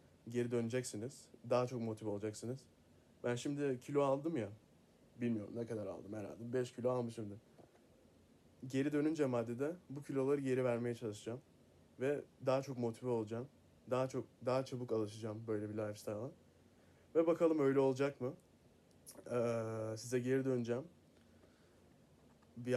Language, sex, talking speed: Turkish, male, 130 wpm